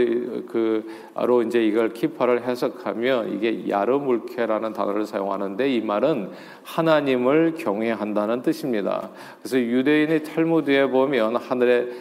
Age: 40-59